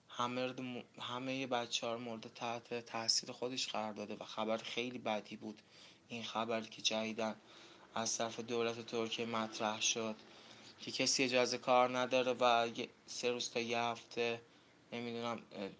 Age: 20-39